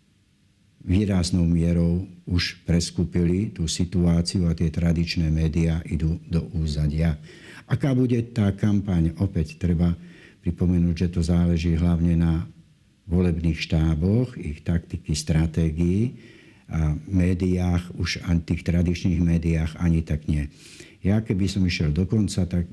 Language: Slovak